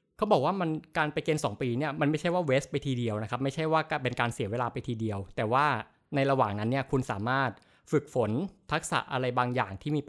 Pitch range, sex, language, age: 120-145 Hz, male, Thai, 20-39